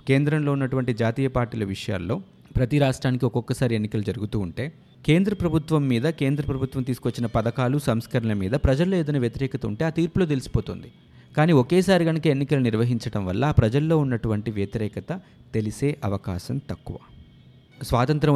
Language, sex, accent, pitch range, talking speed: Telugu, male, native, 110-145 Hz, 130 wpm